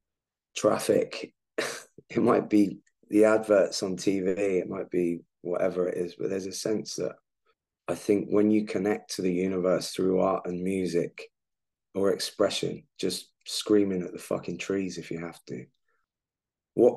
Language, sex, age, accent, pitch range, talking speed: English, male, 20-39, British, 90-110 Hz, 155 wpm